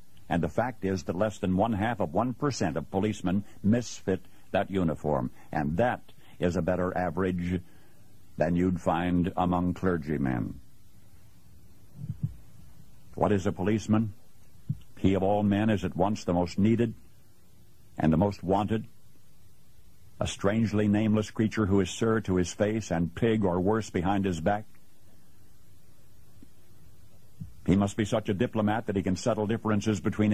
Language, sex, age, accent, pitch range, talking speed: English, male, 60-79, American, 90-110 Hz, 145 wpm